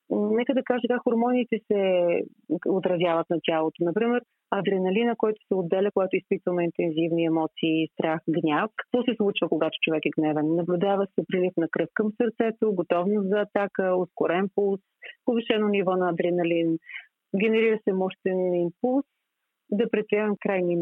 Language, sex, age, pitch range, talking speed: Bulgarian, female, 30-49, 170-215 Hz, 145 wpm